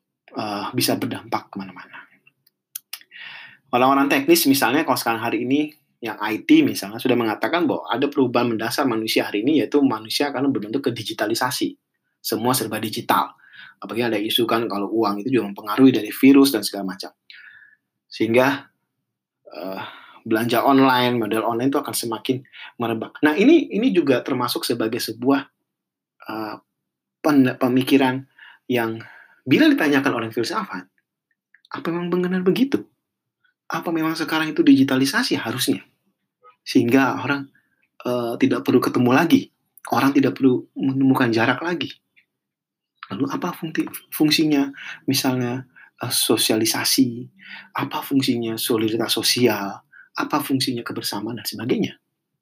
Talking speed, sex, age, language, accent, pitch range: 125 wpm, male, 20-39, Indonesian, native, 115-160 Hz